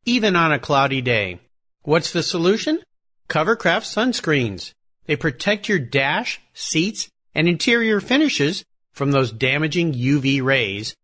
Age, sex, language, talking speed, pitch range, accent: 50-69, male, English, 125 wpm, 135-215 Hz, American